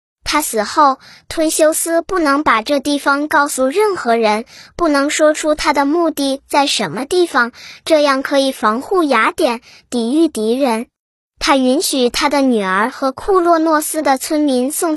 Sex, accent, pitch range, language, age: male, native, 255-330 Hz, Chinese, 10-29